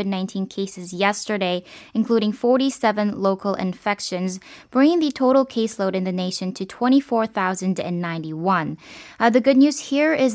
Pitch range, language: 195-245 Hz, Korean